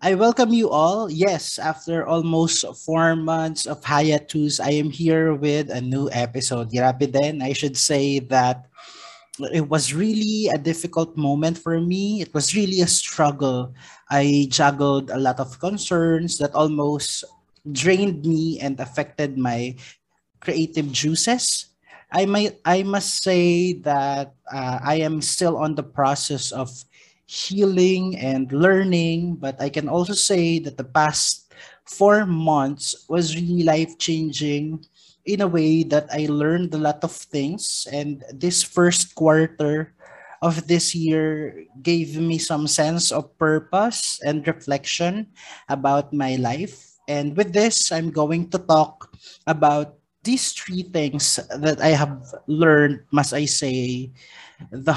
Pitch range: 140-170 Hz